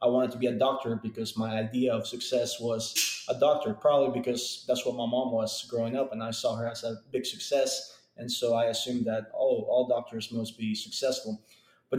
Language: English